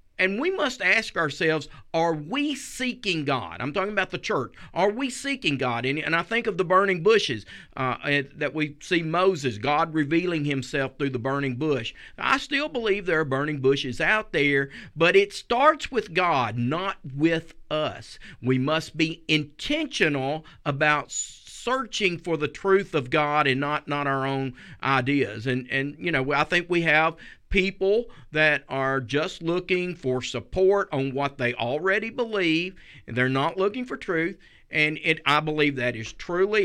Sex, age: male, 50-69